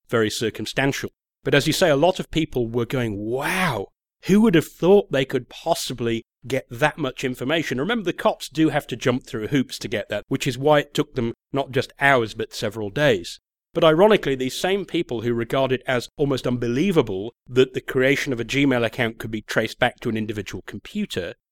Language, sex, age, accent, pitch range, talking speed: English, male, 40-59, British, 115-150 Hz, 205 wpm